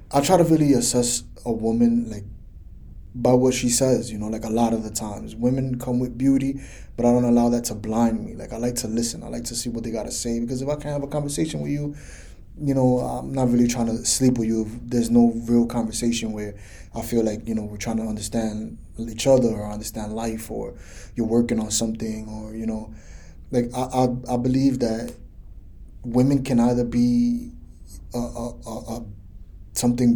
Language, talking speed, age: English, 215 wpm, 20-39